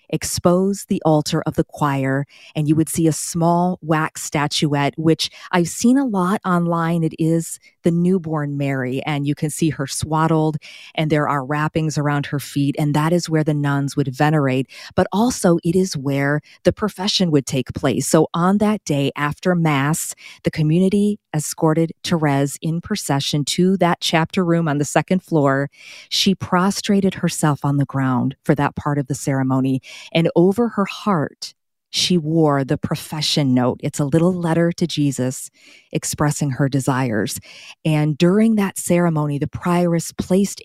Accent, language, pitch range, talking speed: American, English, 145-170 Hz, 165 wpm